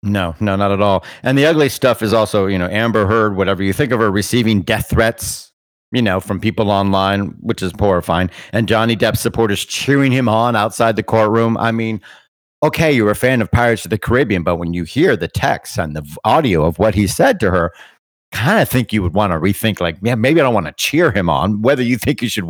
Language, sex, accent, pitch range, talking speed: English, male, American, 100-130 Hz, 240 wpm